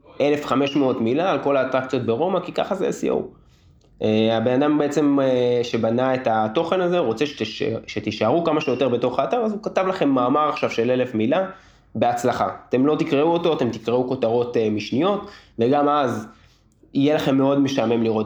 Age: 20-39